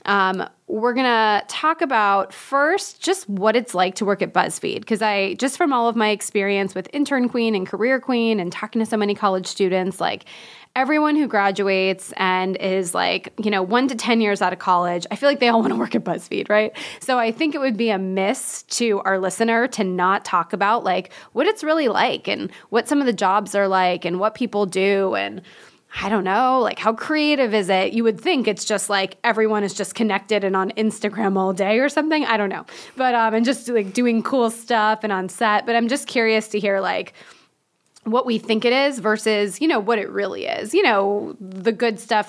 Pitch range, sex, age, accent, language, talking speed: 195-240 Hz, female, 20-39, American, English, 225 wpm